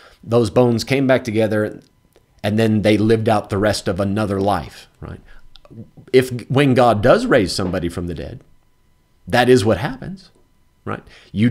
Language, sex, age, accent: English, male, 40-59, American